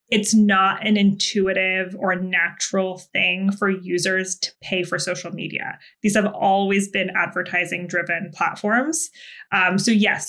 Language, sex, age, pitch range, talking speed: English, female, 20-39, 185-220 Hz, 140 wpm